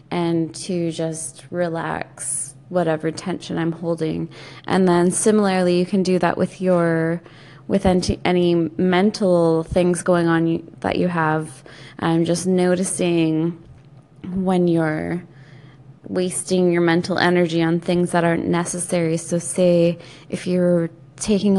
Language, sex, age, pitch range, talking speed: English, female, 20-39, 165-190 Hz, 130 wpm